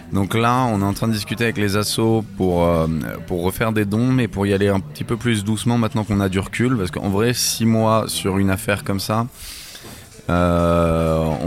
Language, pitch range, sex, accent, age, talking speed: French, 90-110 Hz, male, French, 20-39, 220 wpm